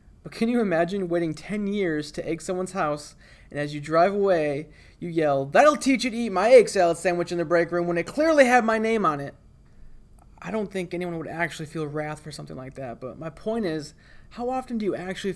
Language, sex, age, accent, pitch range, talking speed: English, male, 30-49, American, 150-185 Hz, 235 wpm